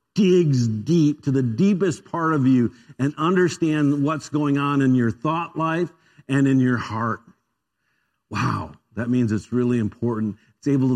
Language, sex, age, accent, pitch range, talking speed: English, male, 50-69, American, 125-155 Hz, 160 wpm